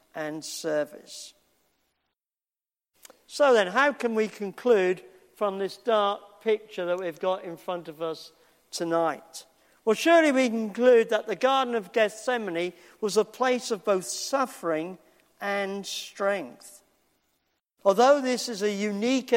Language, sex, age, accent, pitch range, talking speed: English, male, 50-69, British, 195-245 Hz, 130 wpm